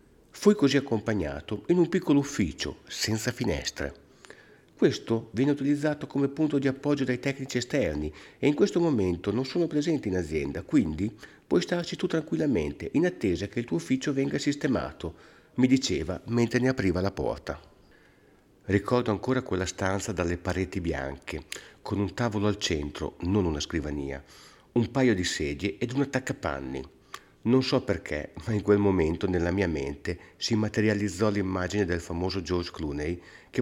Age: 50-69